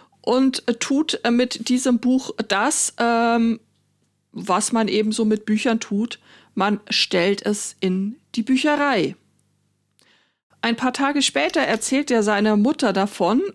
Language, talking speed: German, 130 wpm